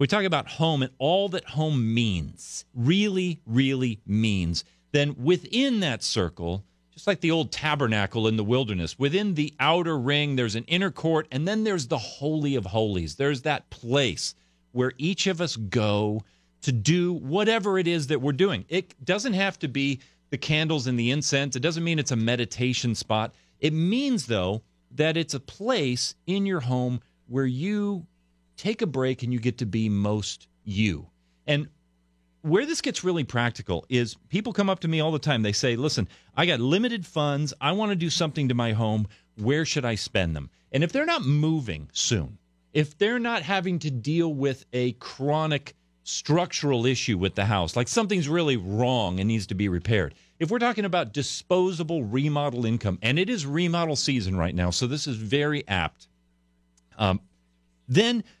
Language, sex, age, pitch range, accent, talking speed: English, male, 40-59, 105-165 Hz, American, 185 wpm